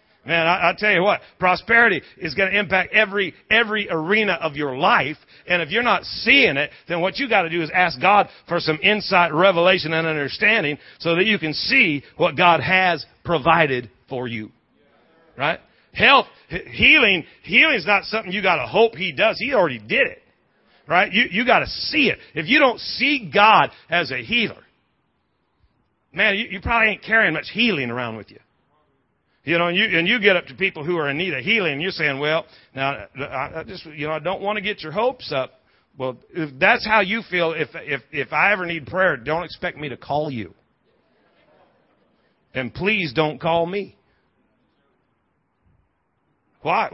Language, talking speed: English, 190 wpm